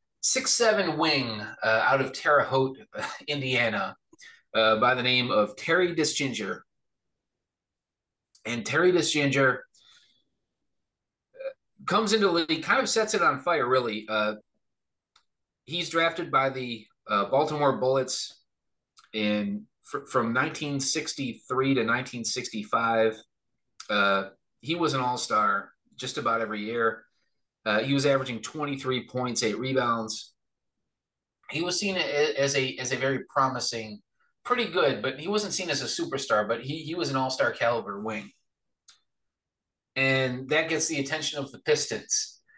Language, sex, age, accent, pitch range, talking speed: English, male, 30-49, American, 115-160 Hz, 130 wpm